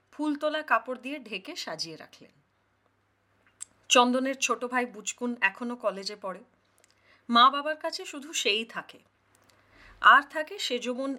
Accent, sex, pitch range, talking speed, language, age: native, female, 200-275 Hz, 75 wpm, Hindi, 30-49